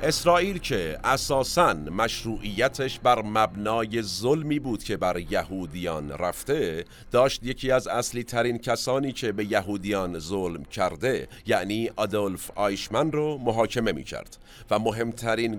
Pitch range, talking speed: 95-125 Hz, 120 wpm